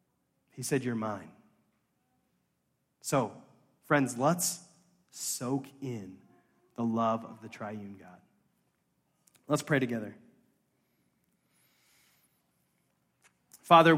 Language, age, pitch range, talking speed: English, 30-49, 125-165 Hz, 80 wpm